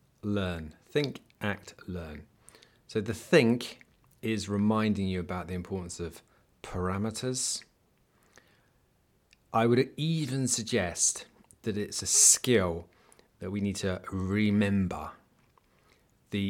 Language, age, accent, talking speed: English, 30-49, British, 105 wpm